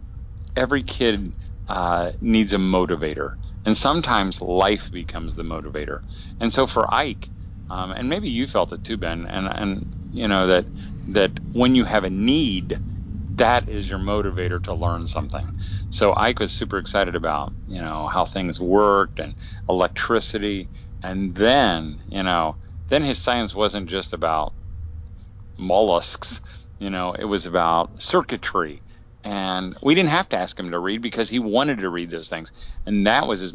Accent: American